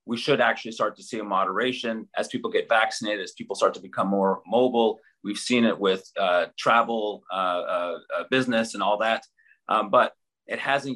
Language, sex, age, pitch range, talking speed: English, male, 30-49, 100-125 Hz, 190 wpm